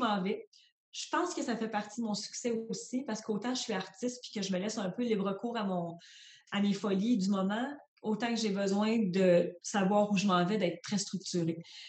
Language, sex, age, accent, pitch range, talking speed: French, female, 30-49, Canadian, 190-245 Hz, 225 wpm